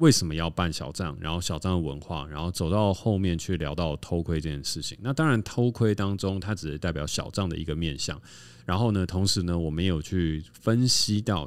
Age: 30-49